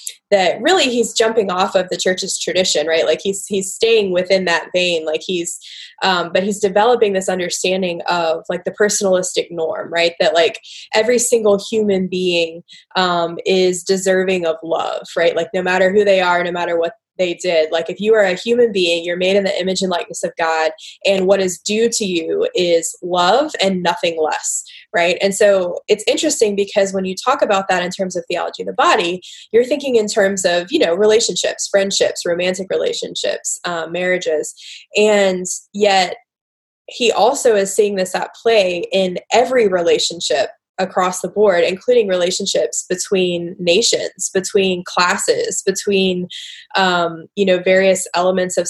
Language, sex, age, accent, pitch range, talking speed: English, female, 20-39, American, 175-210 Hz, 170 wpm